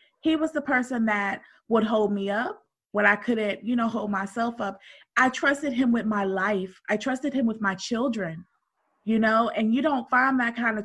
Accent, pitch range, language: American, 200-240 Hz, English